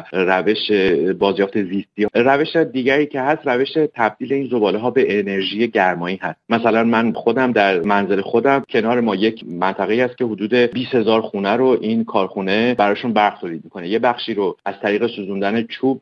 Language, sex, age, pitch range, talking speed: Persian, male, 30-49, 105-125 Hz, 160 wpm